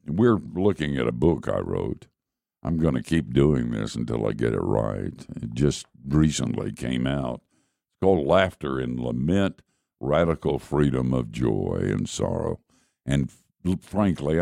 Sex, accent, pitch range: male, American, 70-90 Hz